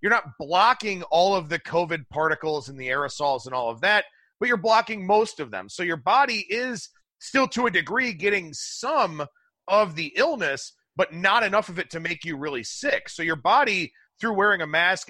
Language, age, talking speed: English, 30-49, 205 wpm